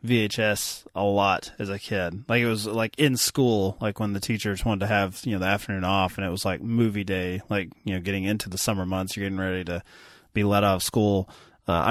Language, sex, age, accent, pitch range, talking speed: English, male, 20-39, American, 100-120 Hz, 235 wpm